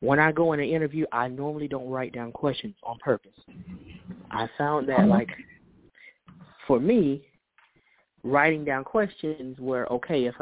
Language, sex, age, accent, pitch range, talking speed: English, male, 20-39, American, 120-165 Hz, 150 wpm